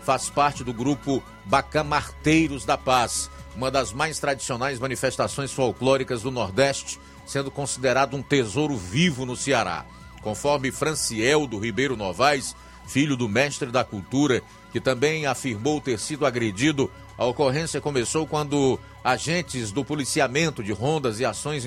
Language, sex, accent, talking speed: Portuguese, male, Brazilian, 135 wpm